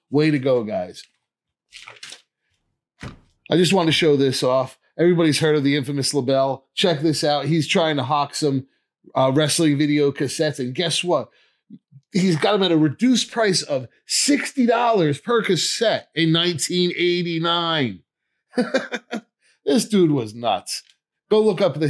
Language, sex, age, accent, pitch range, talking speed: English, male, 30-49, American, 130-175 Hz, 145 wpm